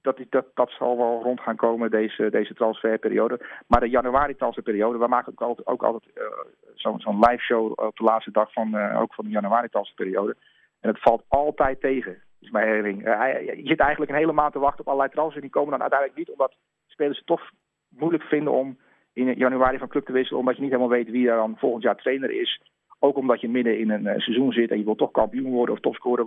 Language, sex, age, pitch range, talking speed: Dutch, male, 40-59, 115-140 Hz, 240 wpm